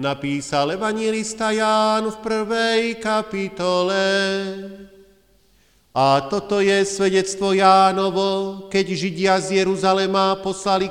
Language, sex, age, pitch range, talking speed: Slovak, male, 40-59, 190-215 Hz, 90 wpm